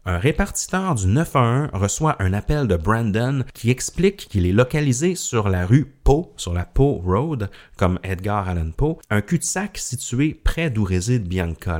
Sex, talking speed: male, 170 wpm